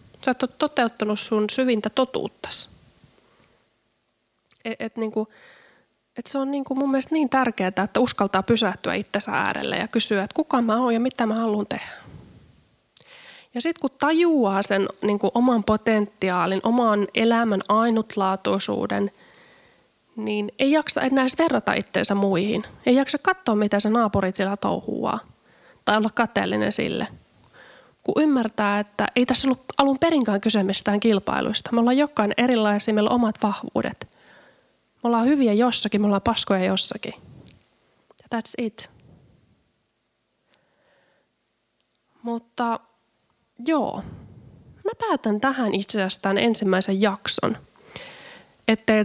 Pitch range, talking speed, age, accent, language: 205-255 Hz, 120 wpm, 20-39, native, Finnish